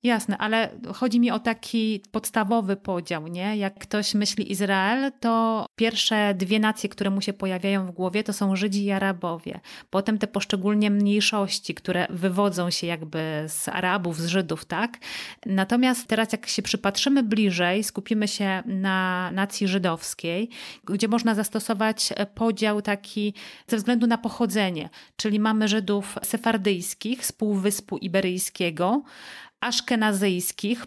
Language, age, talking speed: Polish, 30-49, 135 wpm